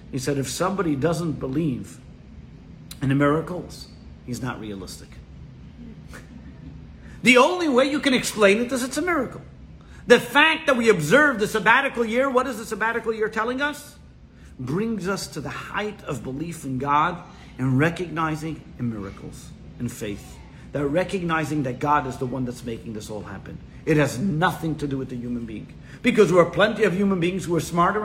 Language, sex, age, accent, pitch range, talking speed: English, male, 50-69, American, 135-195 Hz, 180 wpm